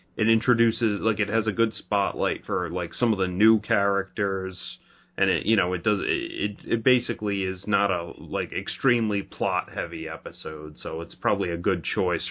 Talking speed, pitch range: 185 wpm, 90-115 Hz